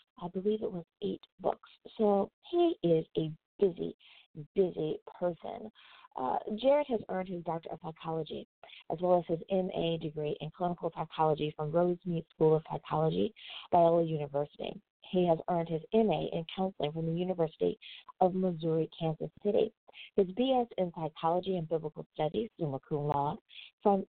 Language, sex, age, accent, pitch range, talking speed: English, female, 40-59, American, 165-215 Hz, 150 wpm